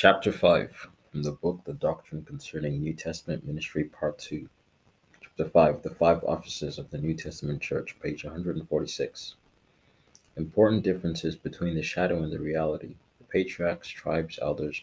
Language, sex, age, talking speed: English, male, 30-49, 150 wpm